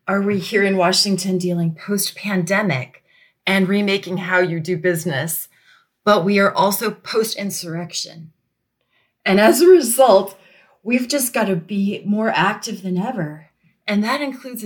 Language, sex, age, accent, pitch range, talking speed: English, female, 30-49, American, 175-210 Hz, 140 wpm